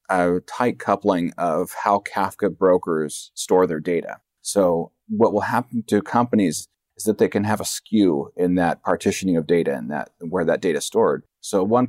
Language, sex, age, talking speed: English, male, 30-49, 185 wpm